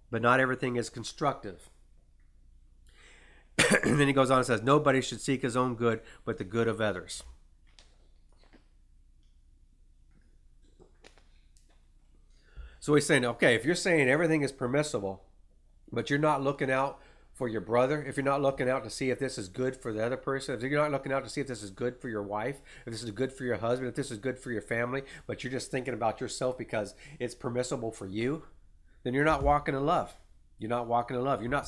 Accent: American